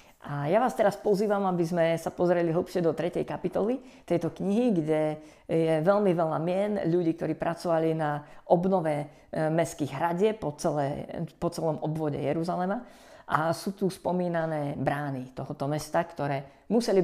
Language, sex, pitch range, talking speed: Slovak, female, 150-185 Hz, 150 wpm